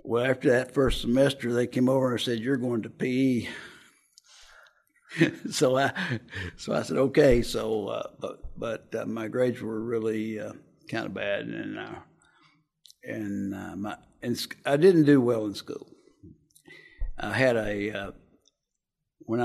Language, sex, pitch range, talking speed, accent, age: English, male, 115-135 Hz, 155 wpm, American, 60-79